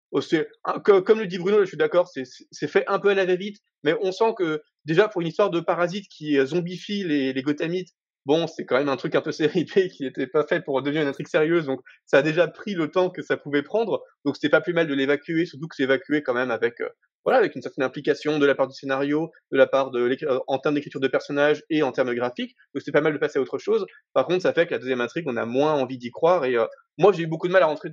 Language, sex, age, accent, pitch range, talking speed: French, male, 20-39, French, 150-200 Hz, 285 wpm